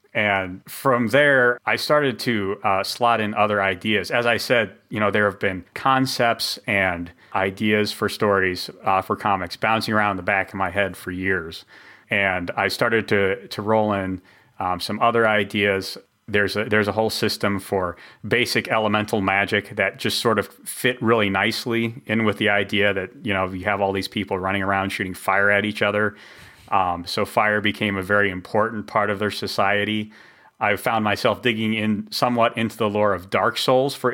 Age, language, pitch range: 30-49, English, 100-115 Hz